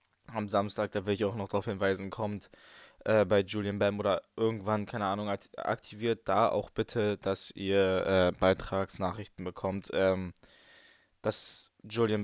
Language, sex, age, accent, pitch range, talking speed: German, male, 20-39, German, 100-120 Hz, 150 wpm